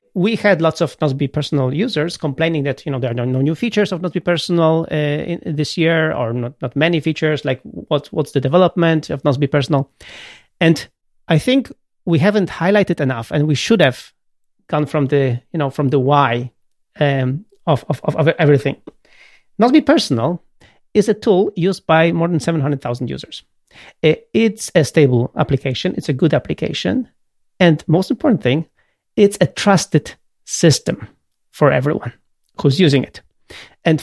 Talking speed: 165 wpm